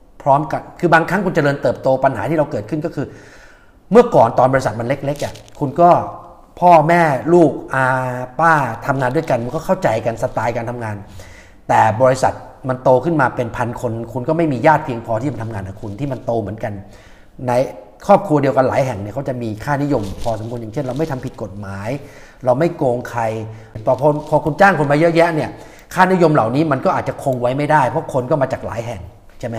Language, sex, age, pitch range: Thai, male, 30-49, 120-160 Hz